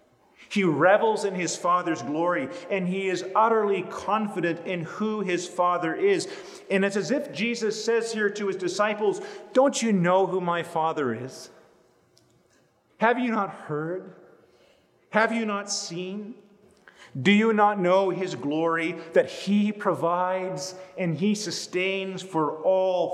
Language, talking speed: English, 145 wpm